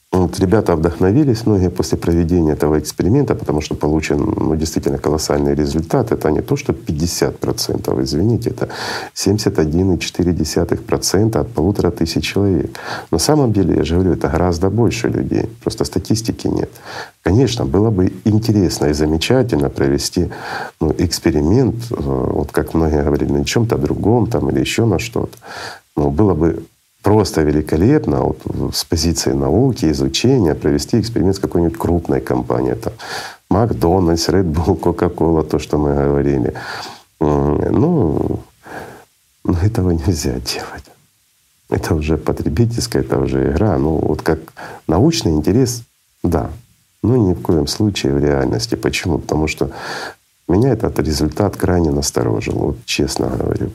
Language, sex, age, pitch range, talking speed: Russian, male, 50-69, 75-95 Hz, 140 wpm